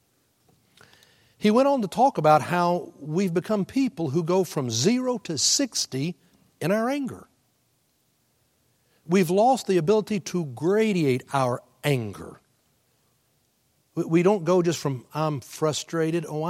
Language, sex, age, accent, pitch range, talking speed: English, male, 60-79, American, 160-215 Hz, 125 wpm